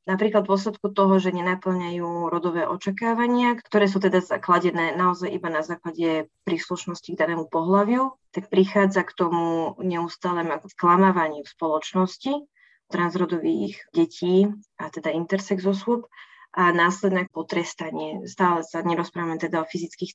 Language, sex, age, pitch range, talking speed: Slovak, female, 20-39, 165-190 Hz, 125 wpm